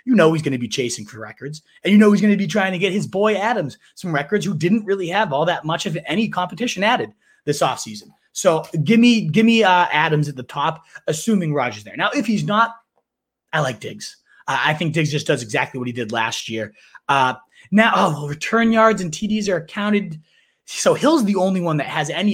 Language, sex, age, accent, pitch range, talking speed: English, male, 20-39, American, 145-210 Hz, 235 wpm